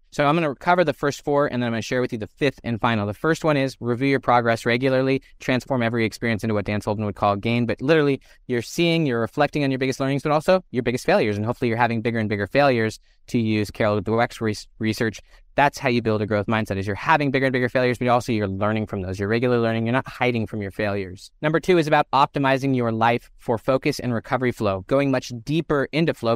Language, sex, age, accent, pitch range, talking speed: English, male, 20-39, American, 110-135 Hz, 250 wpm